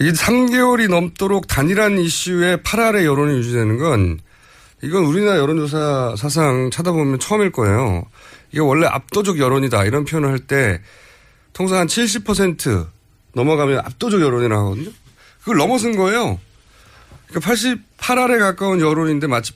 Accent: native